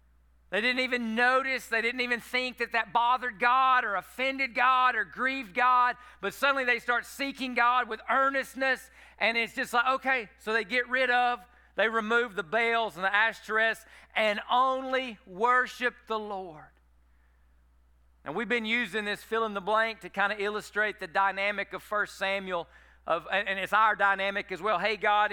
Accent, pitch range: American, 195-235 Hz